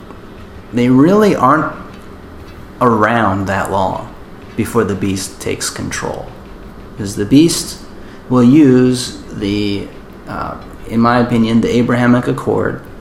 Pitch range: 100-120 Hz